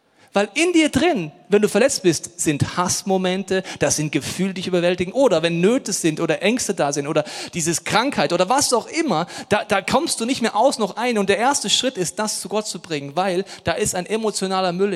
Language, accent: German, German